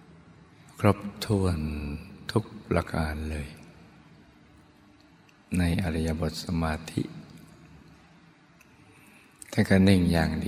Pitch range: 80-90 Hz